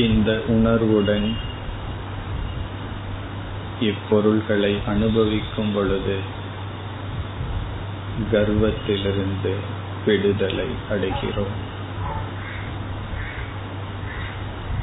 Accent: native